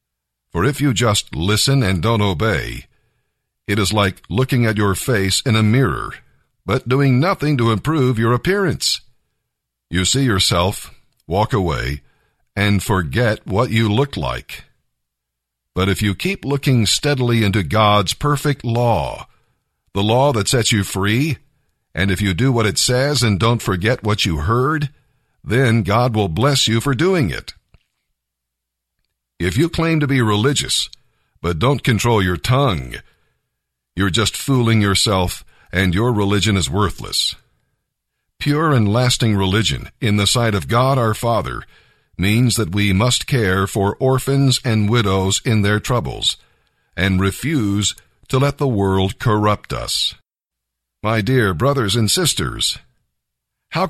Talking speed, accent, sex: 145 wpm, American, male